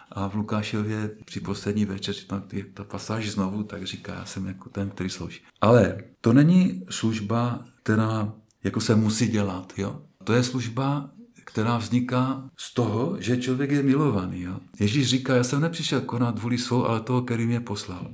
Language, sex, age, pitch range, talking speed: Czech, male, 50-69, 105-135 Hz, 170 wpm